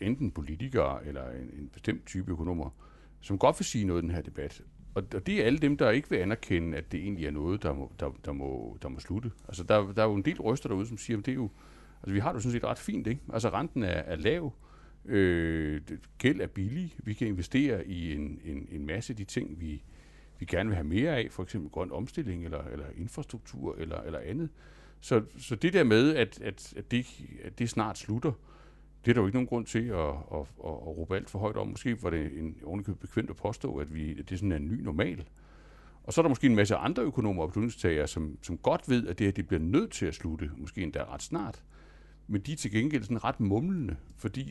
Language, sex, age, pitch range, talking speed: Danish, male, 60-79, 80-115 Hz, 250 wpm